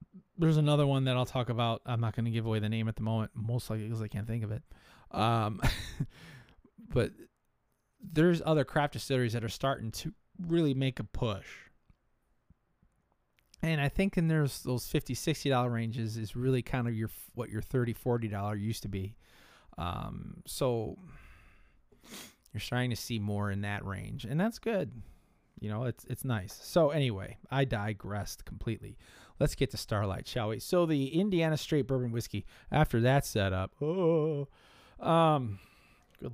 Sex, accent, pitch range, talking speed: male, American, 105-135 Hz, 165 wpm